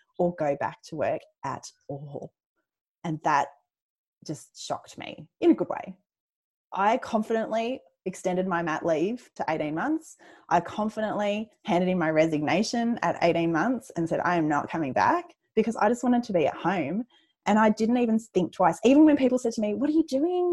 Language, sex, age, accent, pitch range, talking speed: English, female, 20-39, Australian, 160-255 Hz, 190 wpm